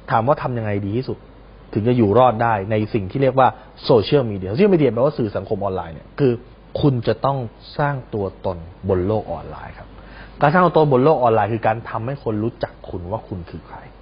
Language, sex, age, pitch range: Thai, male, 20-39, 100-125 Hz